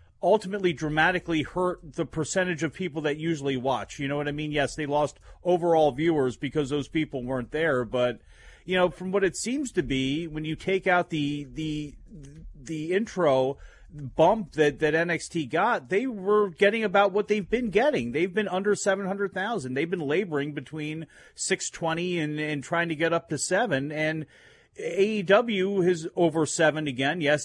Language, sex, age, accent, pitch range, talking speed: English, male, 40-59, American, 145-180 Hz, 175 wpm